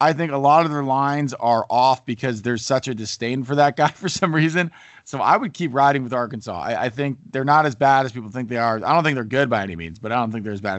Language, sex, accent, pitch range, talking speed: English, male, American, 120-145 Hz, 300 wpm